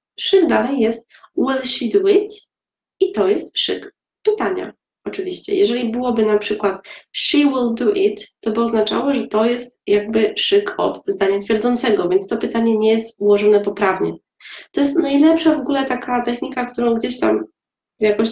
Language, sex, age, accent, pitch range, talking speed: Polish, female, 20-39, native, 215-295 Hz, 165 wpm